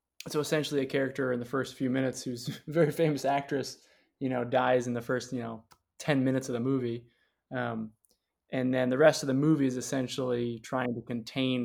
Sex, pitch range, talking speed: male, 120-140 Hz, 205 wpm